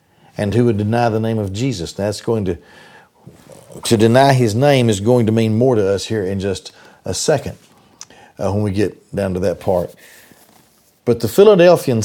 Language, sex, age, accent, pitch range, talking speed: English, male, 50-69, American, 100-140 Hz, 190 wpm